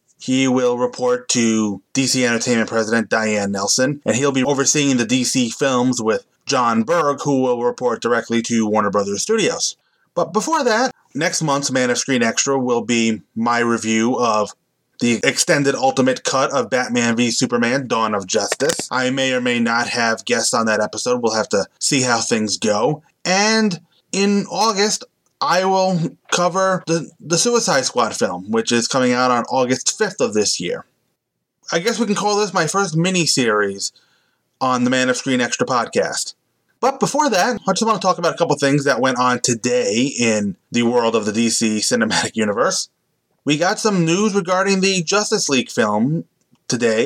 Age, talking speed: 20-39, 180 wpm